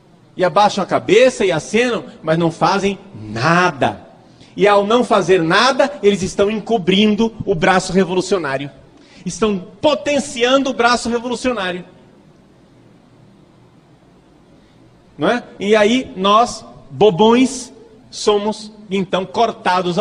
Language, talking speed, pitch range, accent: Portuguese, 105 wpm, 185-245 Hz, Brazilian